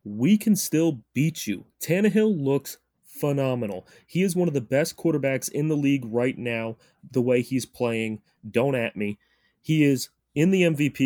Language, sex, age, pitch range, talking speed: English, male, 30-49, 120-155 Hz, 175 wpm